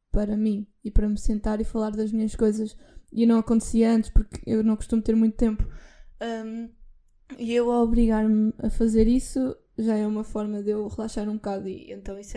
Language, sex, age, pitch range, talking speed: Portuguese, female, 10-29, 215-245 Hz, 205 wpm